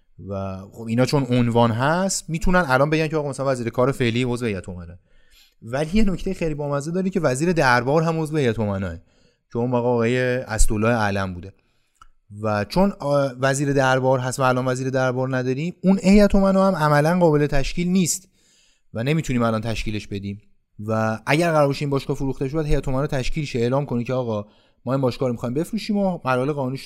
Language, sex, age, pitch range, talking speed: Persian, male, 30-49, 115-145 Hz, 190 wpm